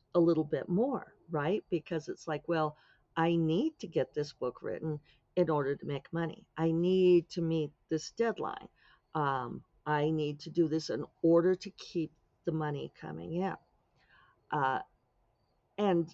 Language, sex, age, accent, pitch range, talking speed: English, female, 50-69, American, 145-190 Hz, 160 wpm